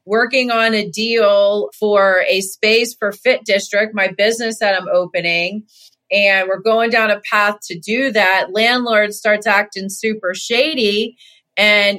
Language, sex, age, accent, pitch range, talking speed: English, female, 30-49, American, 190-225 Hz, 150 wpm